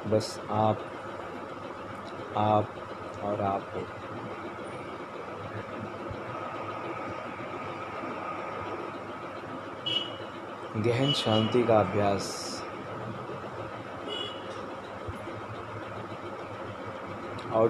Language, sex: Hindi, male